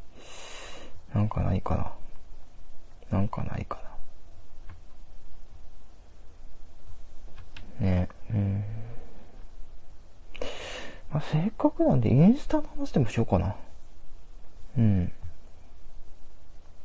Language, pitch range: Japanese, 85-110 Hz